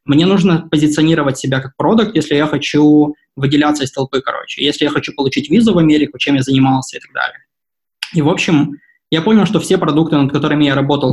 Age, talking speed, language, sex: 20-39, 205 wpm, Russian, male